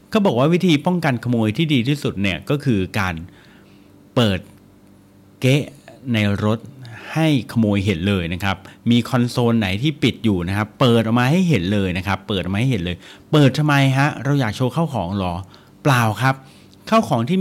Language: Thai